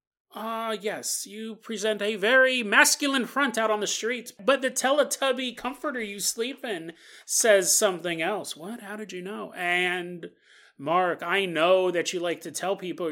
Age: 30-49